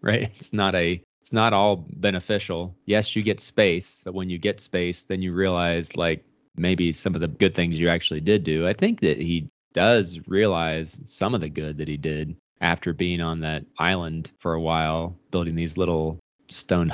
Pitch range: 85-105 Hz